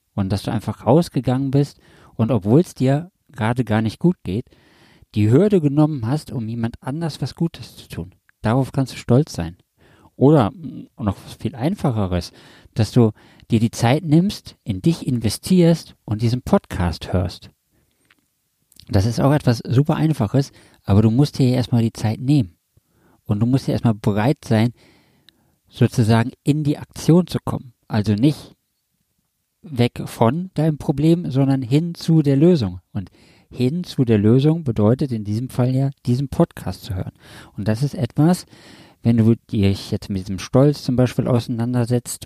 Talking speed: 160 wpm